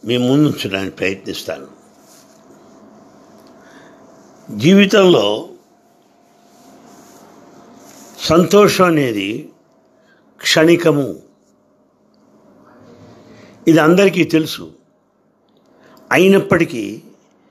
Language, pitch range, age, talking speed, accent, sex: English, 135-185 Hz, 60-79, 40 wpm, Indian, male